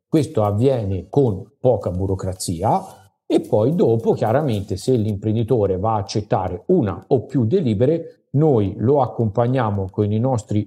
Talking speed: 135 wpm